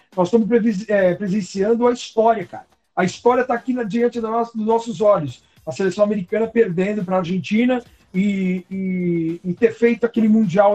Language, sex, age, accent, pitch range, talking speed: Portuguese, male, 60-79, Brazilian, 170-220 Hz, 150 wpm